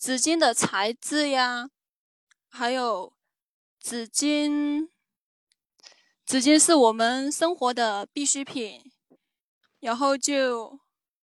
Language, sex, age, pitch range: Chinese, female, 10-29, 235-295 Hz